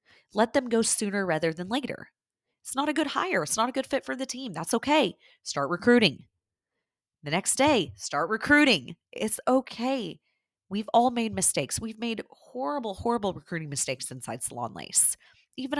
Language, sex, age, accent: English, female, 30-49, American